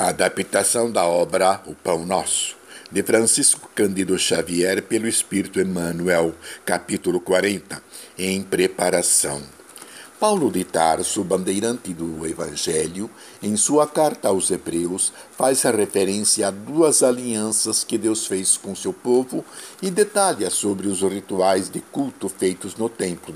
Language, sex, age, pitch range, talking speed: Portuguese, male, 60-79, 90-115 Hz, 130 wpm